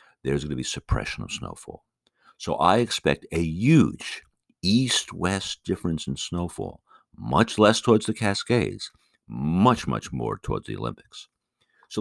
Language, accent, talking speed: English, American, 140 wpm